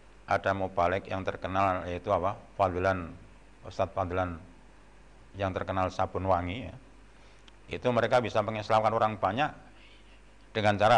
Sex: male